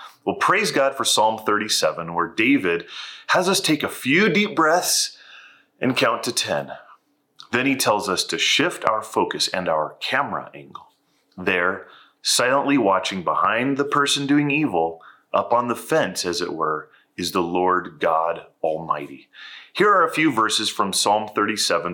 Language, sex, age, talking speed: English, male, 30-49, 160 wpm